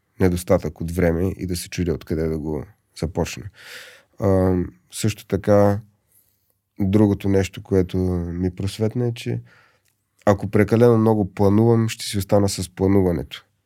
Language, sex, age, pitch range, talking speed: Bulgarian, male, 30-49, 90-105 Hz, 130 wpm